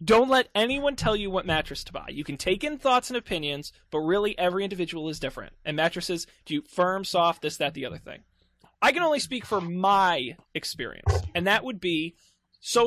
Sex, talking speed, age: male, 205 wpm, 20-39